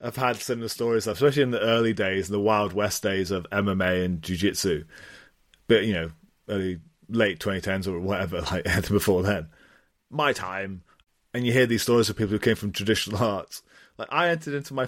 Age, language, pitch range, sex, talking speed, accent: 30-49, English, 95-120 Hz, male, 190 wpm, British